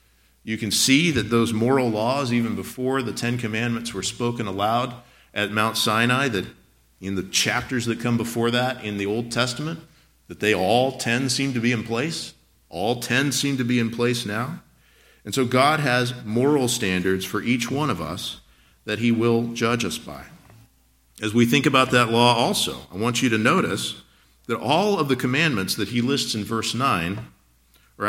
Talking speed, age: 190 wpm, 50-69